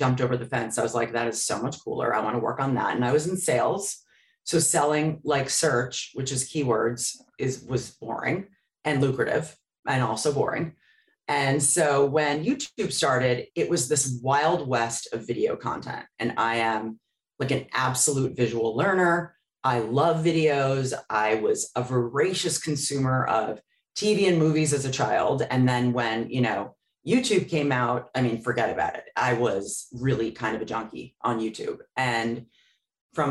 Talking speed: 175 wpm